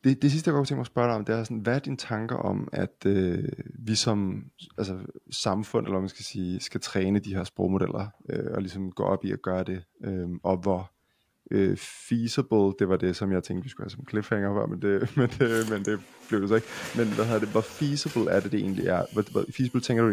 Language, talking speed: Danish, 260 wpm